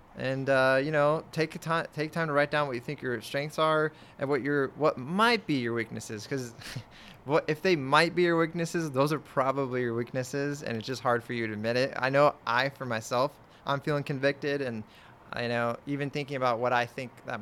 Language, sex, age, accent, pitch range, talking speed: English, male, 20-39, American, 120-145 Hz, 225 wpm